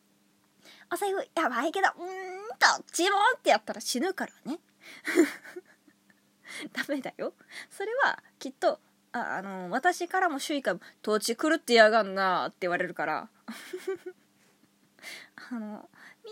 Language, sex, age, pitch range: Japanese, female, 20-39, 215-360 Hz